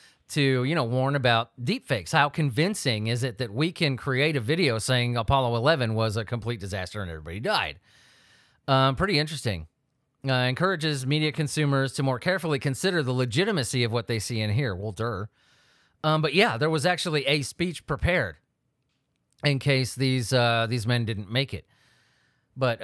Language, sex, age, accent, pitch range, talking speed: English, male, 30-49, American, 120-155 Hz, 175 wpm